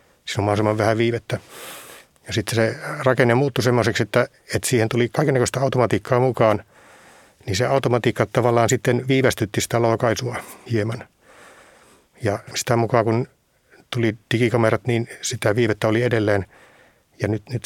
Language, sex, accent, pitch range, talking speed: Finnish, male, native, 105-120 Hz, 135 wpm